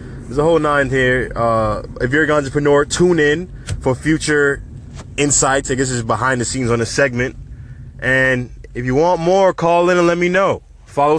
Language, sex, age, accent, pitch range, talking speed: English, male, 20-39, American, 95-125 Hz, 200 wpm